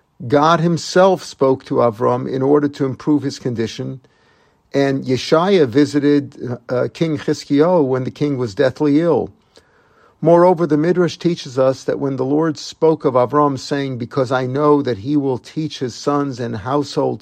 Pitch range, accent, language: 130-155 Hz, American, English